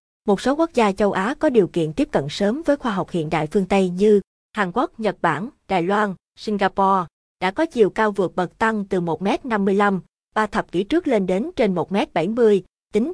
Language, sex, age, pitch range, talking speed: Vietnamese, female, 20-39, 185-230 Hz, 205 wpm